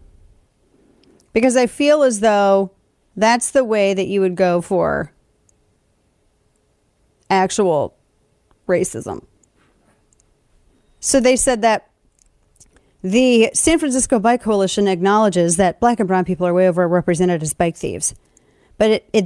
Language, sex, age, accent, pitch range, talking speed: English, female, 40-59, American, 180-225 Hz, 120 wpm